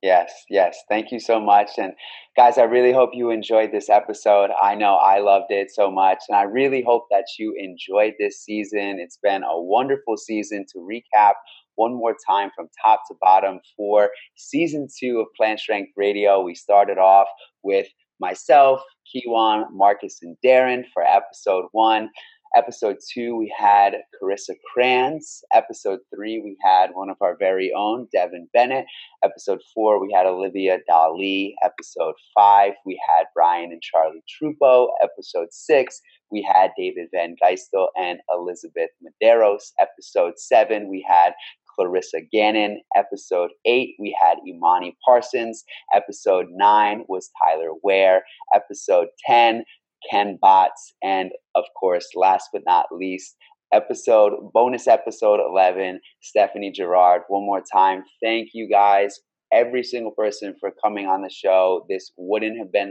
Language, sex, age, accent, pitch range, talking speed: English, male, 30-49, American, 95-125 Hz, 150 wpm